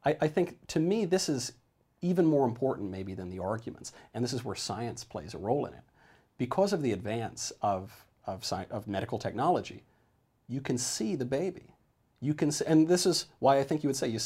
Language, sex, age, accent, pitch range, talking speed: English, male, 40-59, American, 115-150 Hz, 215 wpm